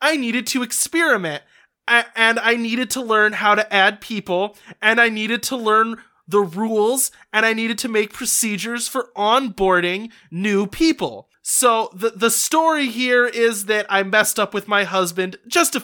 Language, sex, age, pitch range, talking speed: English, male, 20-39, 200-240 Hz, 170 wpm